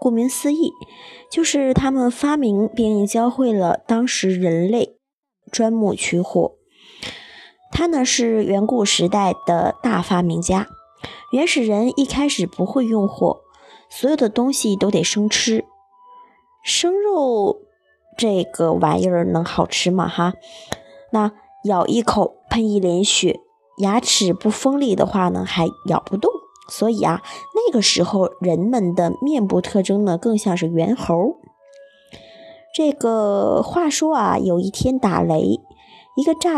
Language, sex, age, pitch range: Chinese, male, 20-39, 195-295 Hz